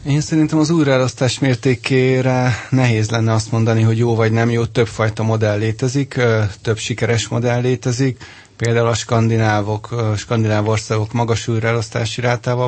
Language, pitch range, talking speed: Hungarian, 110-120 Hz, 140 wpm